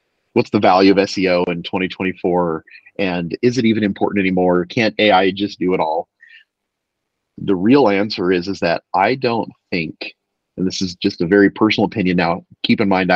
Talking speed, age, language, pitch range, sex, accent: 180 wpm, 30-49, English, 90-115 Hz, male, American